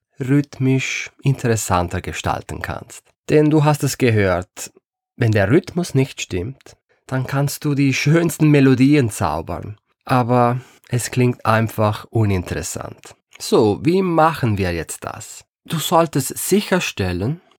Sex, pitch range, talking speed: male, 100-140 Hz, 120 wpm